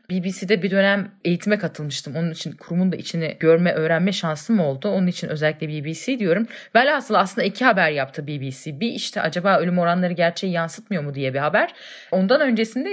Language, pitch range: Turkish, 165-230 Hz